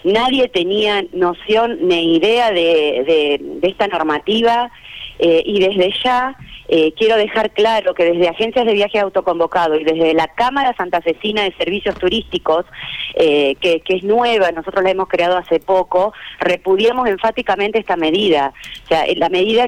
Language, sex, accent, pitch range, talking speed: Spanish, female, Argentinian, 185-270 Hz, 150 wpm